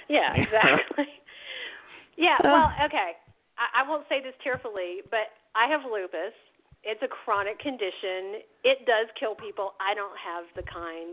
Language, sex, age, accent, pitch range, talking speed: English, female, 40-59, American, 180-260 Hz, 150 wpm